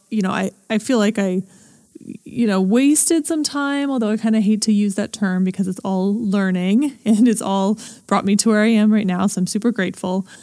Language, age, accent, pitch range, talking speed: English, 20-39, American, 185-220 Hz, 230 wpm